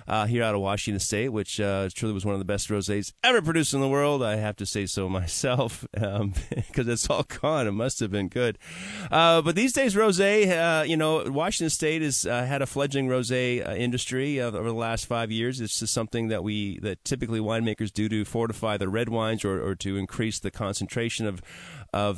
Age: 30-49